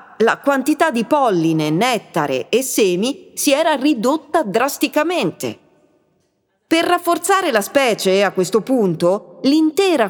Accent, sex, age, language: native, female, 40-59, Italian